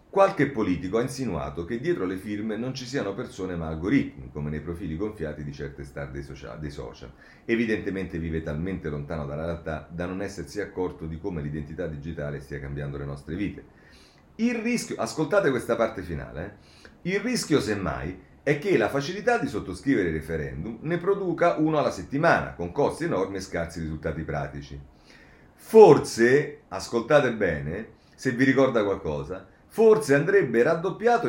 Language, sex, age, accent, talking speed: Italian, male, 40-59, native, 160 wpm